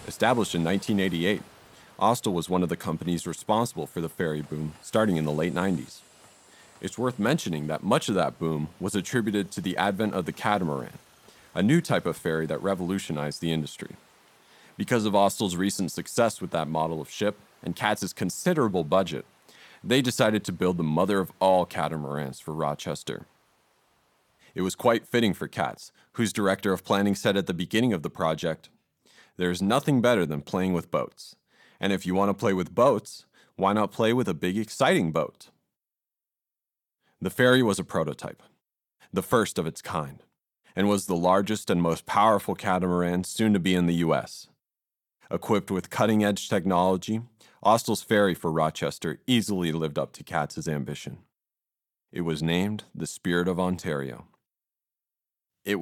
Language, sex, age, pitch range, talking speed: English, male, 40-59, 80-105 Hz, 165 wpm